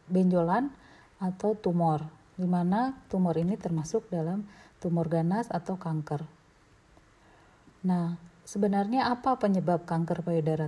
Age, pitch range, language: 40-59, 170-215 Hz, Indonesian